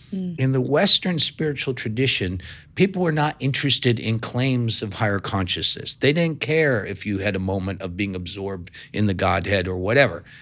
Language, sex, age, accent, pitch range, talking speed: English, male, 50-69, American, 110-145 Hz, 175 wpm